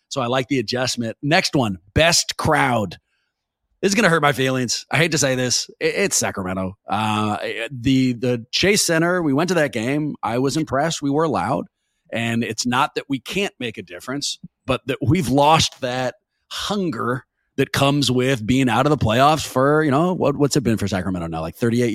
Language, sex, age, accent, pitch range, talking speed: English, male, 30-49, American, 120-175 Hz, 200 wpm